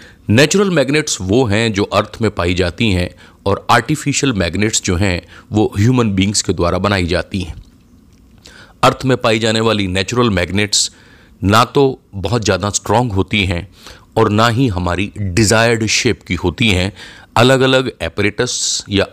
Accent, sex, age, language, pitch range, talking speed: native, male, 30-49, Hindi, 95-125 Hz, 155 wpm